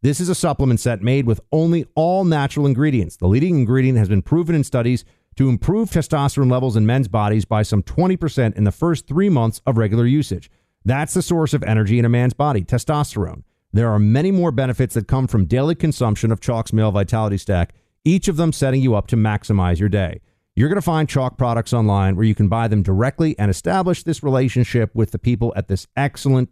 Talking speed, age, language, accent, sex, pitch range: 215 wpm, 50-69, English, American, male, 105-150 Hz